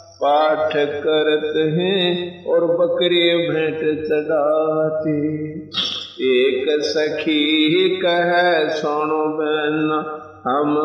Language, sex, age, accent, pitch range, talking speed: Hindi, male, 50-69, native, 150-190 Hz, 70 wpm